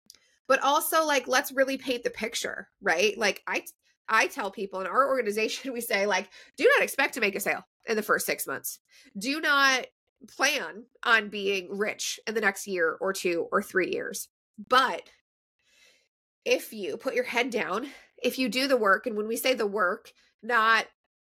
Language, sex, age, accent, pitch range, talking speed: English, female, 20-39, American, 195-260 Hz, 185 wpm